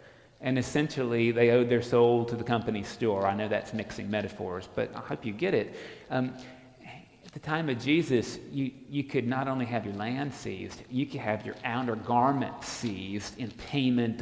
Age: 40-59